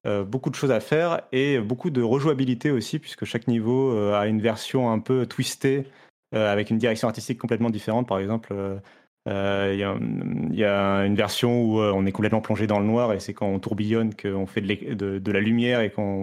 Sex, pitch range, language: male, 105-125 Hz, French